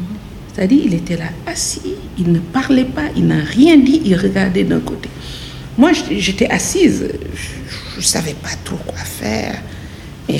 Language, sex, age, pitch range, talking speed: French, female, 60-79, 150-220 Hz, 160 wpm